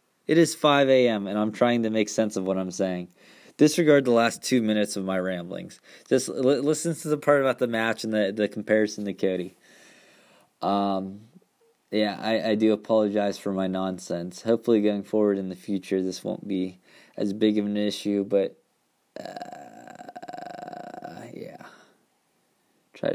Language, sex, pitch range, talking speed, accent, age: English, male, 100-125 Hz, 165 wpm, American, 20-39